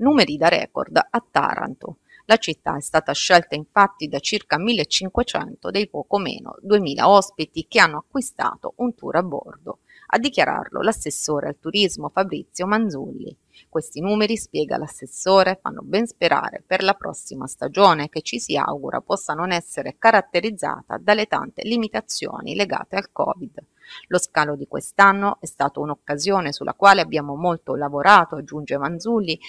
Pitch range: 155-210 Hz